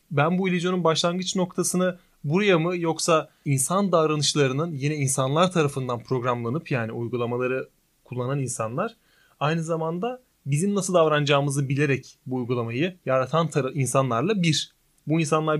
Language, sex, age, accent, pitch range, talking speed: Turkish, male, 30-49, native, 130-165 Hz, 125 wpm